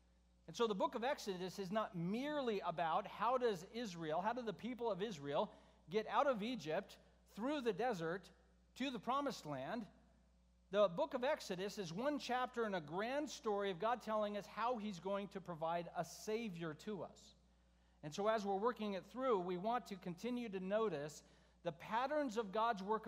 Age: 50-69